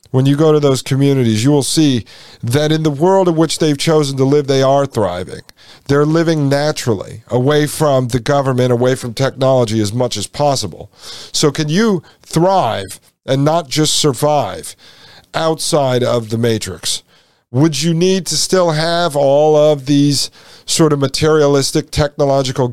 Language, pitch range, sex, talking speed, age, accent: English, 120-150 Hz, male, 160 wpm, 50-69, American